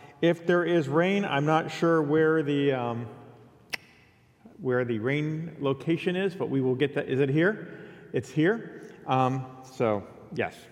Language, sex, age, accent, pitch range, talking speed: English, male, 40-59, American, 135-175 Hz, 155 wpm